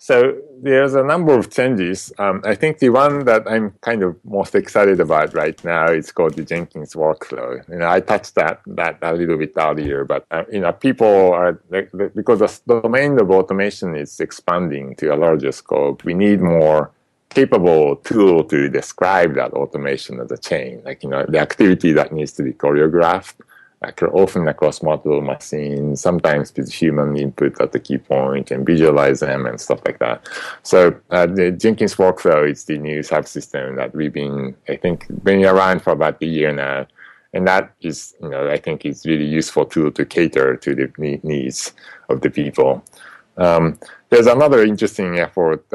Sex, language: male, English